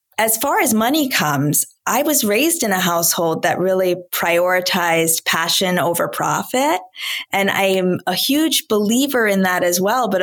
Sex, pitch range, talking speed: female, 175-210 Hz, 165 wpm